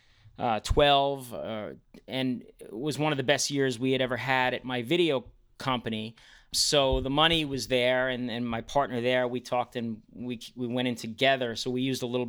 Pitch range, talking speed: 120-150 Hz, 205 wpm